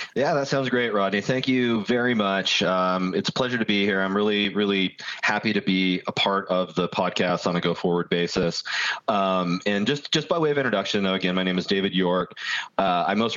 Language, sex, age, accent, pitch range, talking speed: English, male, 30-49, American, 90-105 Hz, 220 wpm